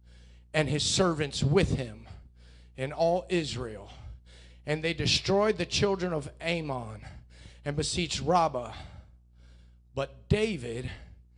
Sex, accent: male, American